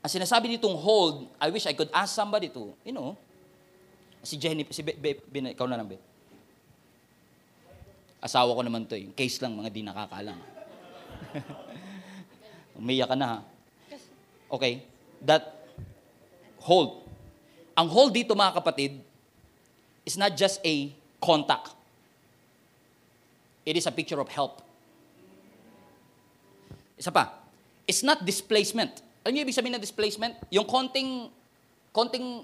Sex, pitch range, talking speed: male, 165-260 Hz, 120 wpm